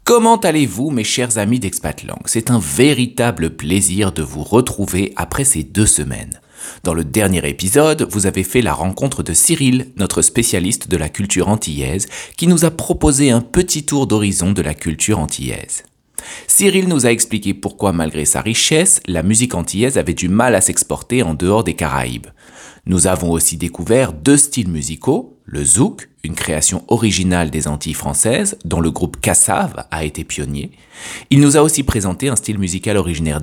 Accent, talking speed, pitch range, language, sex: French, 175 wpm, 85-125 Hz, French, male